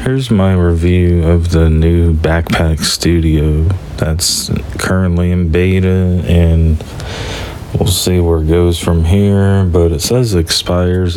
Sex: male